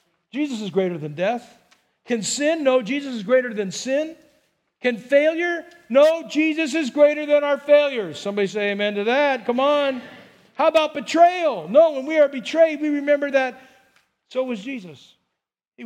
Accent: American